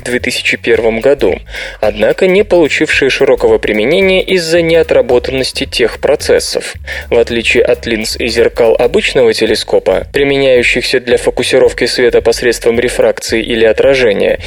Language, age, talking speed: Russian, 20-39, 110 wpm